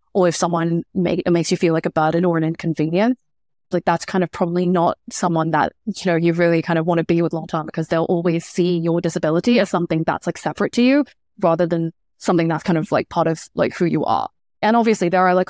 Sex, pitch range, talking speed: female, 165-185 Hz, 250 wpm